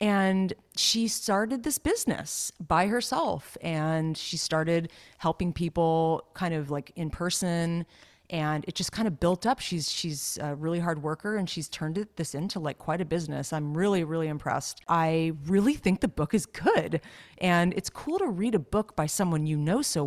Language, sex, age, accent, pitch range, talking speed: English, female, 30-49, American, 155-200 Hz, 185 wpm